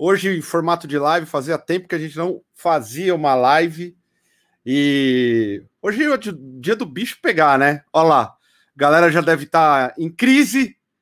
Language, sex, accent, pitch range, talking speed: Portuguese, male, Brazilian, 150-180 Hz, 170 wpm